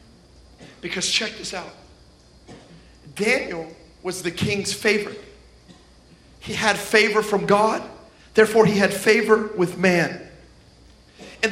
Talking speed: 110 wpm